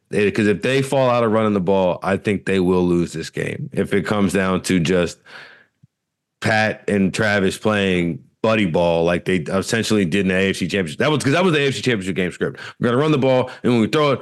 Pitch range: 100-130 Hz